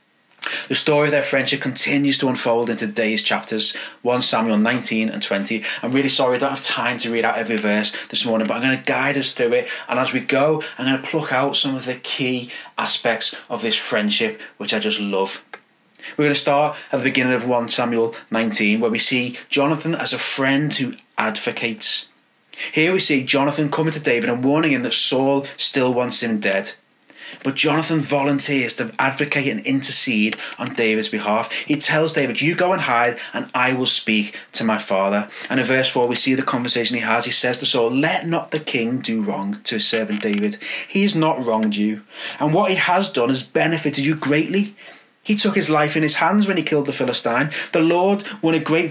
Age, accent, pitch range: 20-39, British, 120-160 Hz